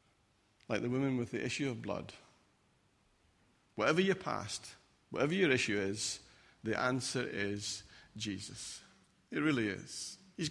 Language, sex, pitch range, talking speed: English, male, 120-160 Hz, 130 wpm